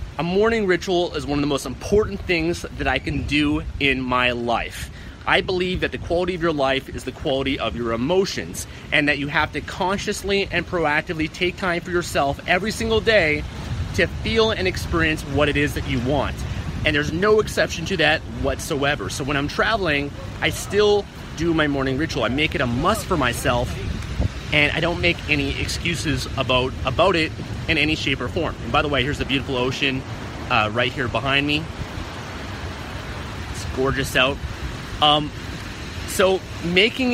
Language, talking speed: English, 185 wpm